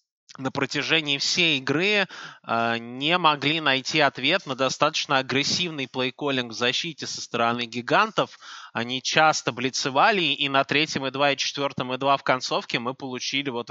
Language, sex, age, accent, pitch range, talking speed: Russian, male, 20-39, native, 115-140 Hz, 160 wpm